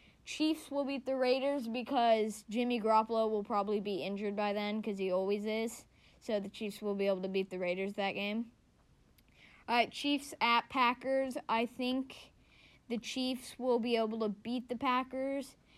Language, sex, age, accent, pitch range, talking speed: English, female, 20-39, American, 205-245 Hz, 175 wpm